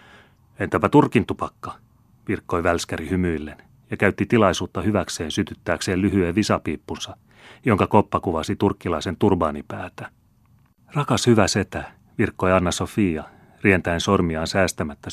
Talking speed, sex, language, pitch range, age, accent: 105 wpm, male, Finnish, 90-115 Hz, 30-49, native